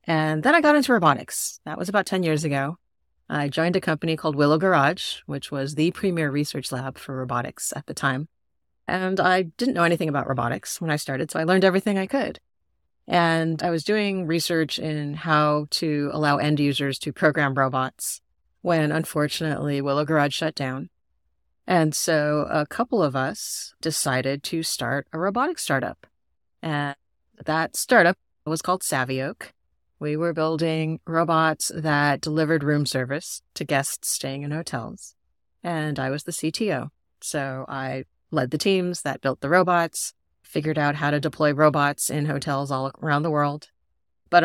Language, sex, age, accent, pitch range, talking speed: English, female, 30-49, American, 135-165 Hz, 165 wpm